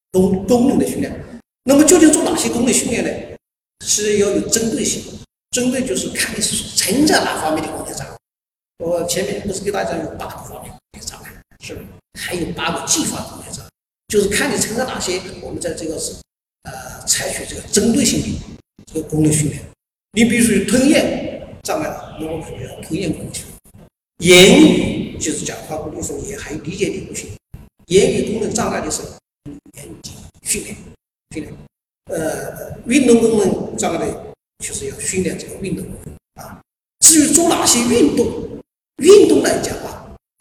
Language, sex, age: Chinese, male, 50-69